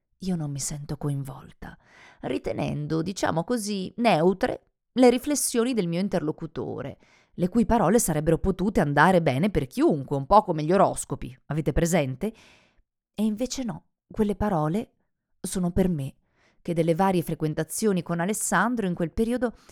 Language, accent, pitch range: Italian, native, 150-205 Hz